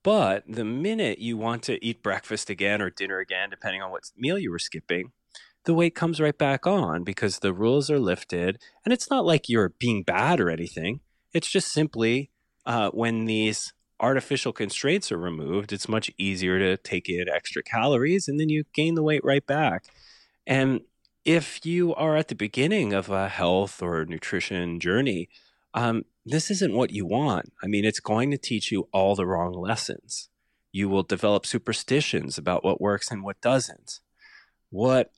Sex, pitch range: male, 95-140 Hz